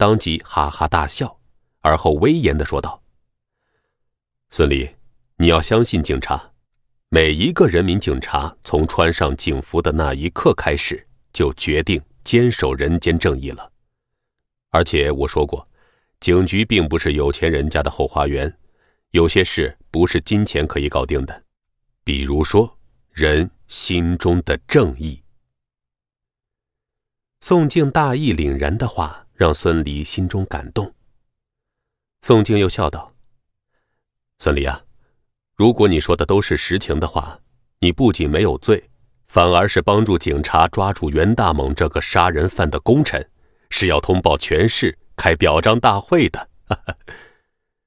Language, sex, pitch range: Chinese, male, 75-120 Hz